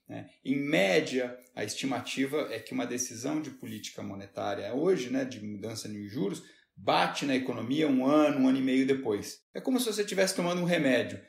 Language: Portuguese